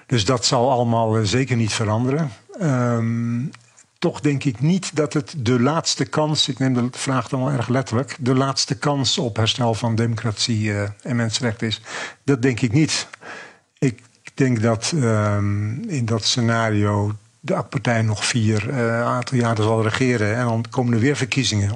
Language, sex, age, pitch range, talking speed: Dutch, male, 50-69, 110-130 Hz, 170 wpm